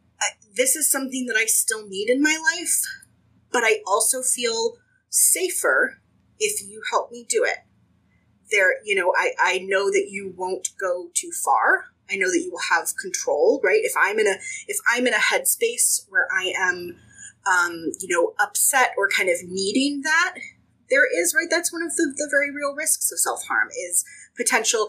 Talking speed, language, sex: 190 wpm, English, female